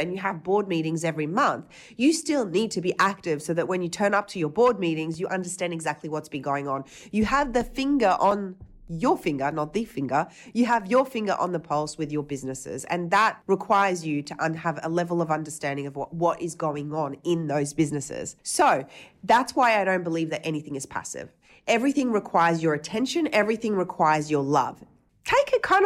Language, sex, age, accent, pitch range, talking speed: English, female, 30-49, Australian, 155-220 Hz, 210 wpm